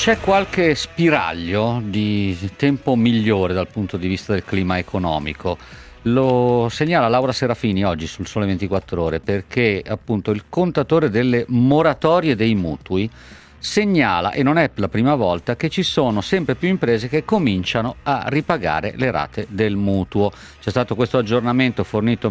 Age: 50-69